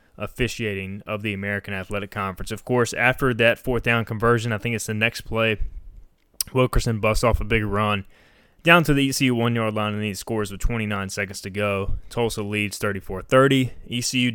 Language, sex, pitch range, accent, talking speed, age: English, male, 105-125 Hz, American, 180 wpm, 20-39